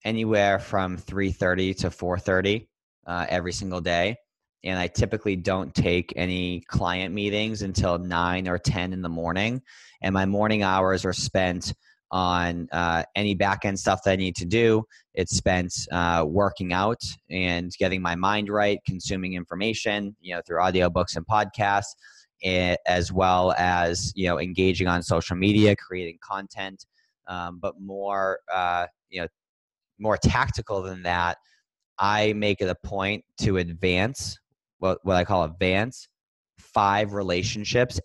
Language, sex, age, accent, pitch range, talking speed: English, male, 20-39, American, 90-105 Hz, 150 wpm